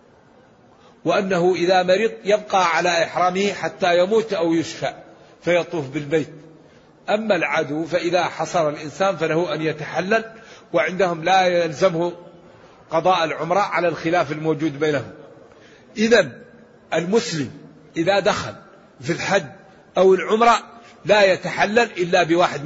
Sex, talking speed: male, 110 wpm